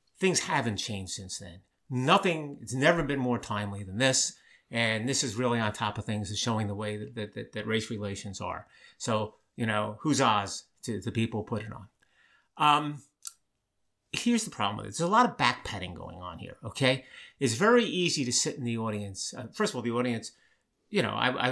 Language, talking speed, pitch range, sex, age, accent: English, 210 wpm, 105-140 Hz, male, 50-69, American